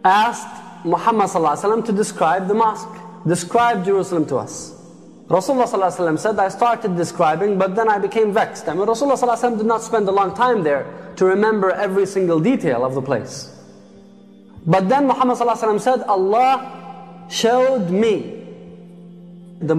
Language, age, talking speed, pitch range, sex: English, 20-39, 140 wpm, 180-225 Hz, male